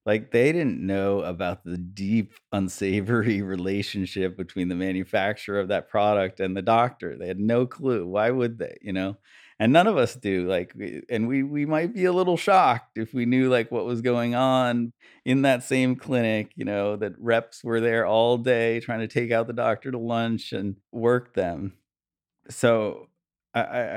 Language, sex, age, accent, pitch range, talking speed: English, male, 40-59, American, 90-115 Hz, 190 wpm